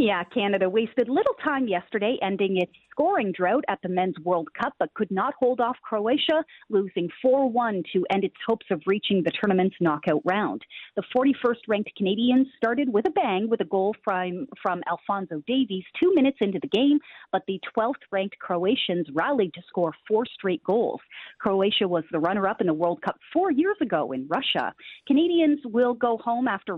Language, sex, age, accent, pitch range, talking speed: English, female, 40-59, American, 180-255 Hz, 180 wpm